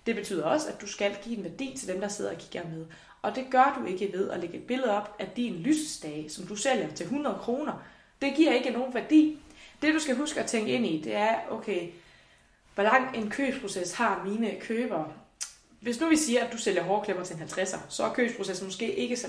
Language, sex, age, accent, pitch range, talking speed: Danish, female, 20-39, native, 185-255 Hz, 235 wpm